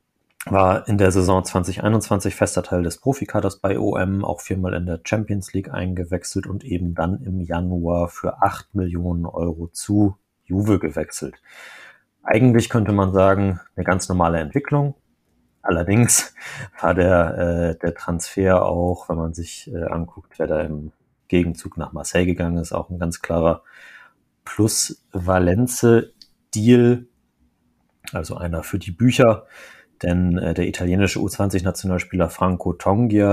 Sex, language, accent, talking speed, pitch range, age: male, German, German, 135 wpm, 85-100 Hz, 30-49